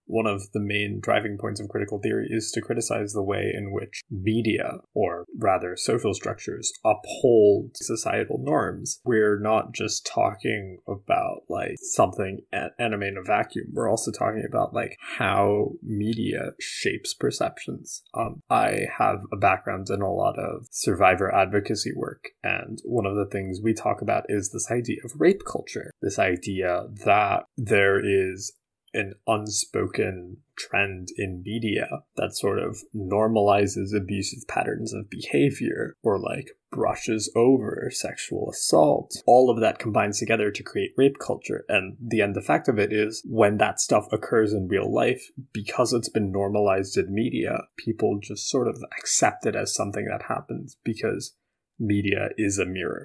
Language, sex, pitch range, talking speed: English, male, 100-110 Hz, 155 wpm